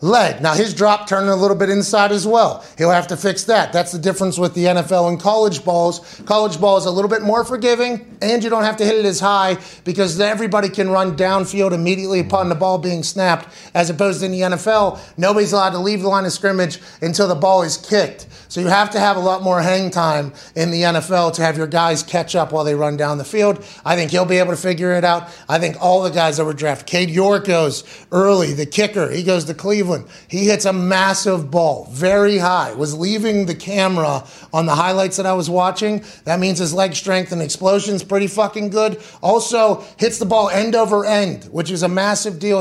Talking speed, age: 230 wpm, 30-49